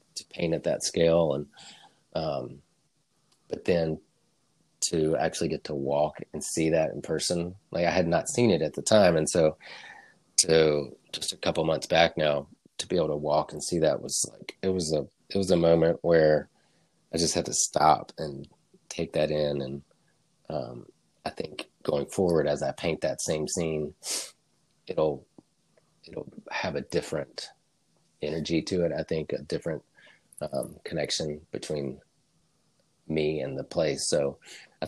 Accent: American